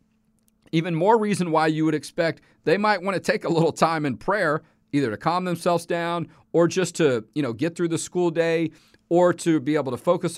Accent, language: American, English